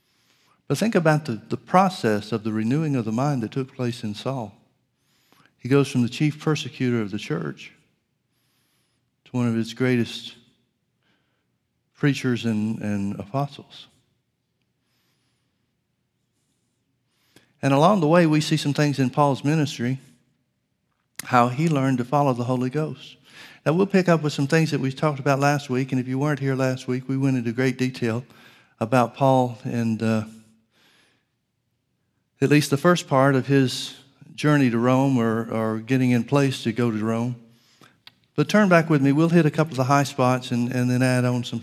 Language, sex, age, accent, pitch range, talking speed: English, male, 50-69, American, 120-145 Hz, 175 wpm